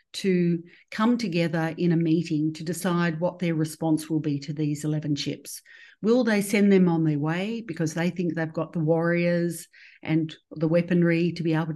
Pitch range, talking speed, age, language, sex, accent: 160-180 Hz, 190 wpm, 50-69, English, female, Australian